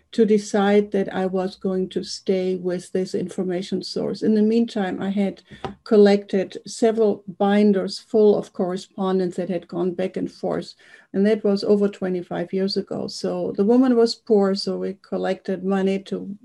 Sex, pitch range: female, 190-215 Hz